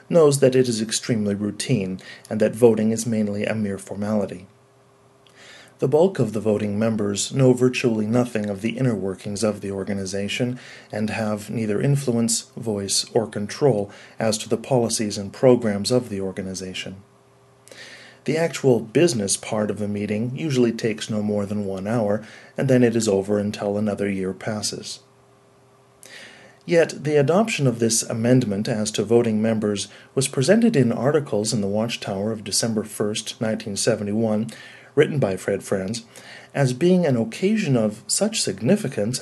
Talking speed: 155 wpm